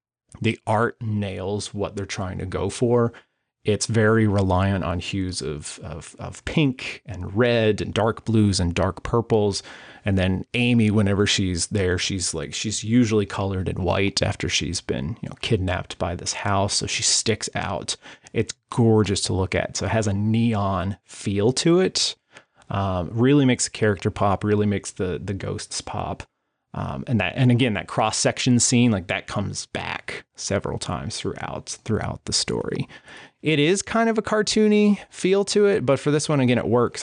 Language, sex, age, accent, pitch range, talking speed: English, male, 30-49, American, 95-120 Hz, 180 wpm